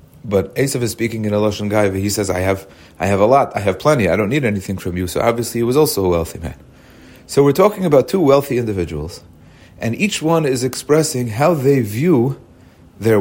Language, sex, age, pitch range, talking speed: English, male, 40-59, 100-145 Hz, 220 wpm